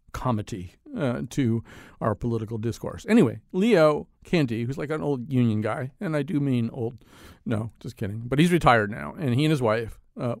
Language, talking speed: English, 190 wpm